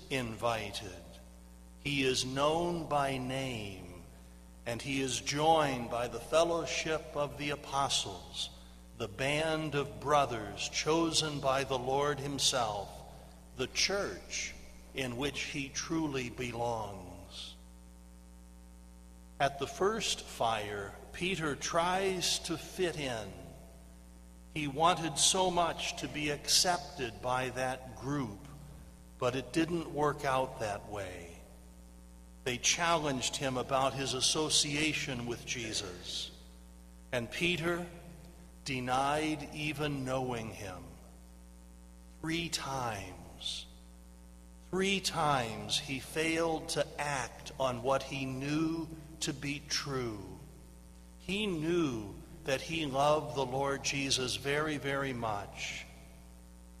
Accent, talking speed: American, 105 wpm